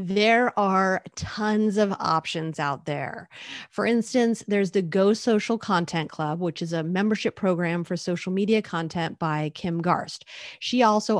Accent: American